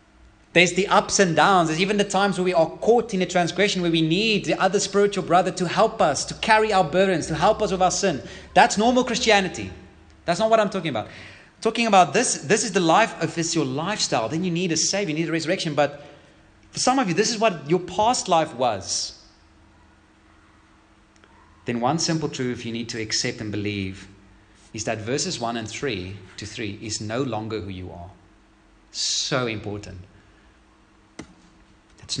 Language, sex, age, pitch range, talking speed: English, male, 30-49, 105-165 Hz, 190 wpm